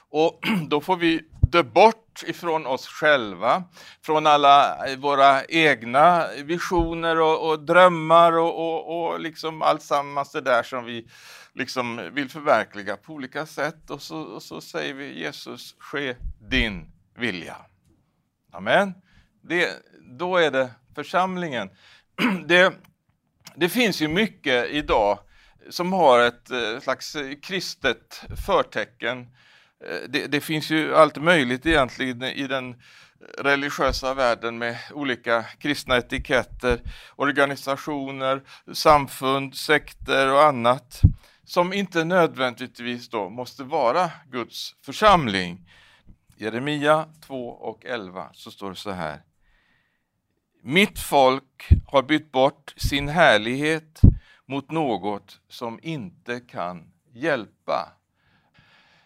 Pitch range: 125-165 Hz